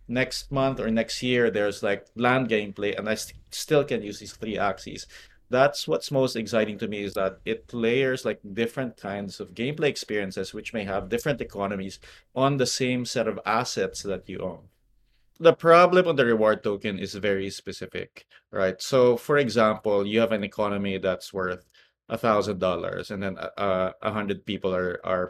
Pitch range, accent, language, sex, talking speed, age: 100-120 Hz, Filipino, English, male, 185 wpm, 20-39